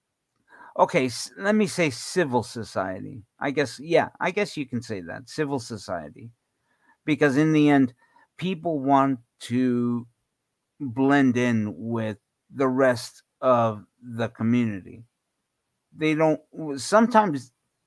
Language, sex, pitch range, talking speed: English, male, 115-145 Hz, 120 wpm